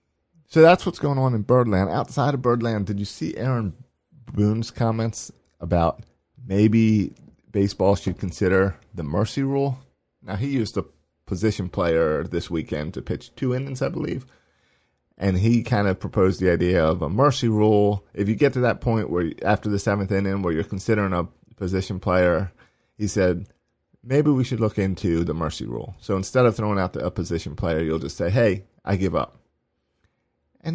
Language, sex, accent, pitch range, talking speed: English, male, American, 85-115 Hz, 180 wpm